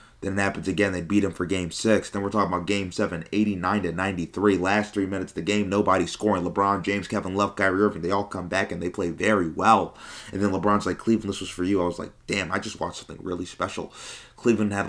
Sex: male